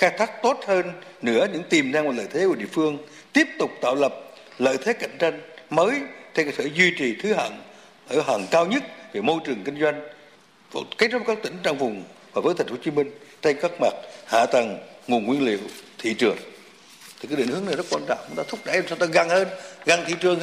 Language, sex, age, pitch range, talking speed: Vietnamese, male, 60-79, 155-215 Hz, 235 wpm